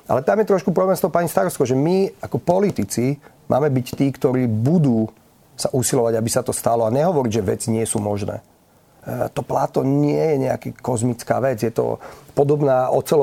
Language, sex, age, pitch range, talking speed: Slovak, male, 40-59, 125-150 Hz, 180 wpm